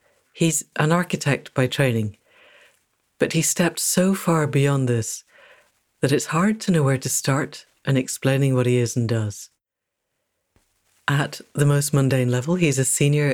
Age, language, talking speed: 60-79, English, 155 wpm